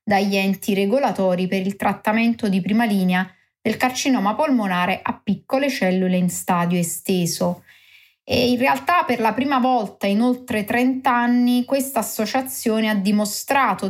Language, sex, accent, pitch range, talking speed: Italian, female, native, 195-245 Hz, 145 wpm